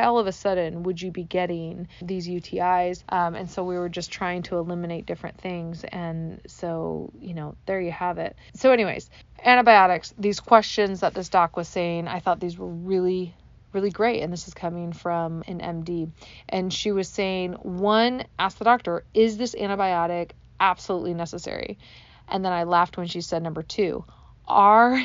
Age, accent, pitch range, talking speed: 30-49, American, 175-225 Hz, 180 wpm